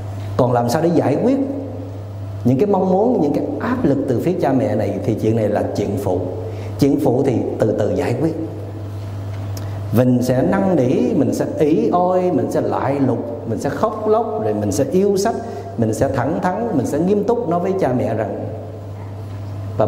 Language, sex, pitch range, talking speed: Vietnamese, male, 100-135 Hz, 200 wpm